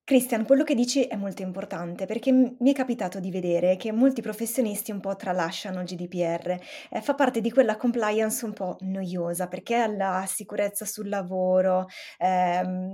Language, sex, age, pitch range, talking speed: Italian, female, 20-39, 185-230 Hz, 165 wpm